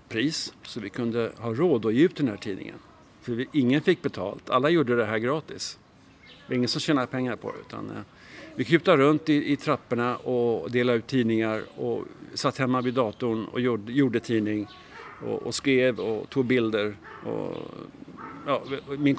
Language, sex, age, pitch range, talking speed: Swedish, male, 50-69, 120-140 Hz, 165 wpm